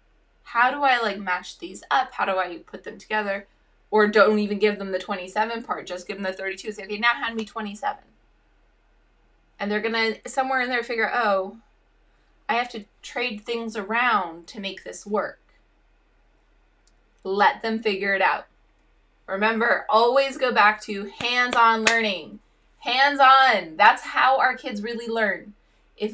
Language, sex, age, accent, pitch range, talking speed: English, female, 20-39, American, 200-250 Hz, 165 wpm